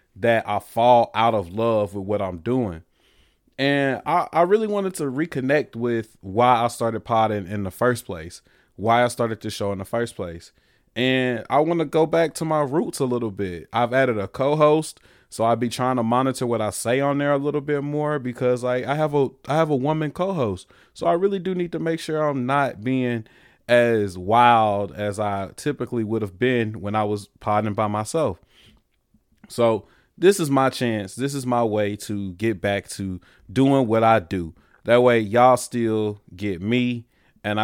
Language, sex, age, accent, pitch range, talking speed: English, male, 20-39, American, 105-135 Hz, 200 wpm